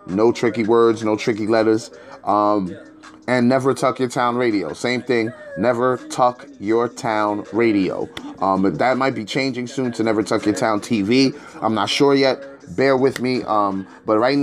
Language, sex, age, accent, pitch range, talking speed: English, male, 30-49, American, 110-140 Hz, 175 wpm